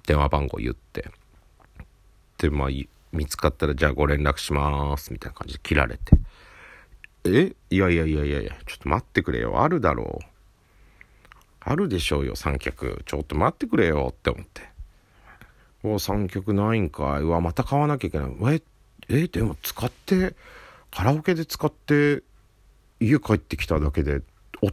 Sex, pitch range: male, 75-115 Hz